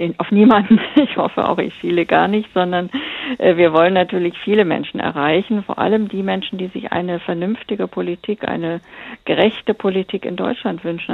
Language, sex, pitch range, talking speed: German, female, 175-205 Hz, 165 wpm